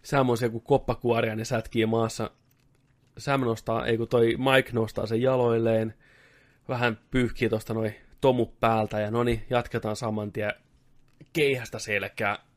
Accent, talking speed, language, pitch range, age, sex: native, 140 wpm, Finnish, 105-130 Hz, 20-39, male